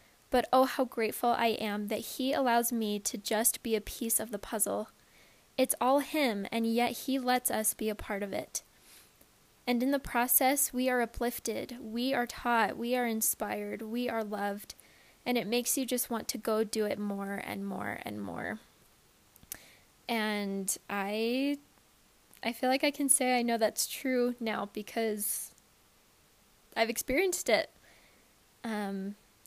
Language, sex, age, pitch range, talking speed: English, female, 10-29, 215-250 Hz, 165 wpm